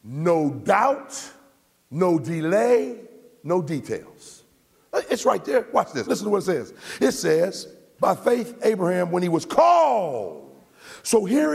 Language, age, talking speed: English, 50-69, 140 wpm